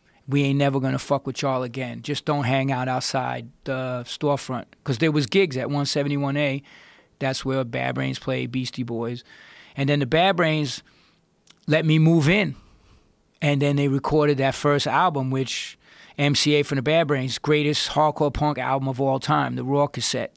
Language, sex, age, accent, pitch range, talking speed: English, male, 30-49, American, 125-145 Hz, 180 wpm